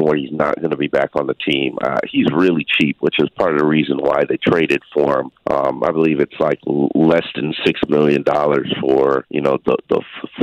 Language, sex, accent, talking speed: English, male, American, 240 wpm